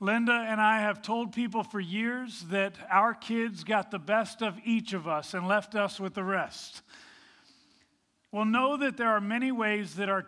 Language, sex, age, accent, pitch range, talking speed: English, male, 40-59, American, 195-240 Hz, 195 wpm